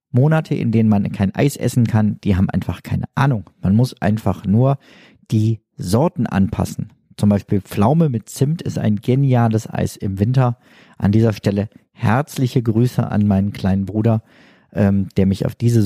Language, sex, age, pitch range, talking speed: German, male, 50-69, 105-130 Hz, 170 wpm